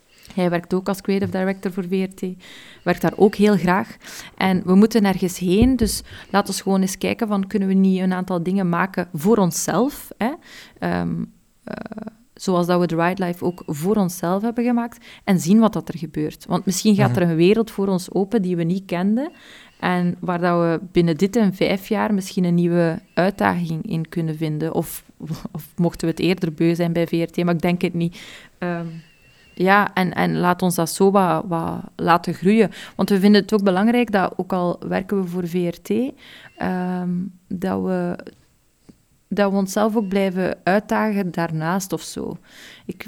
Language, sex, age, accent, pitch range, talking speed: Dutch, female, 20-39, Belgian, 175-205 Hz, 185 wpm